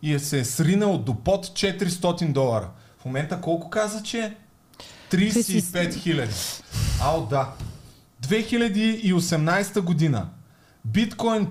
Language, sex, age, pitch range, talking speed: Bulgarian, male, 30-49, 130-210 Hz, 115 wpm